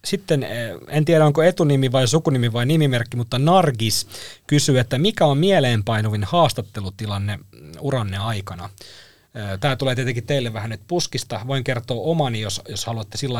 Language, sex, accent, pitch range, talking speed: Finnish, male, native, 110-145 Hz, 150 wpm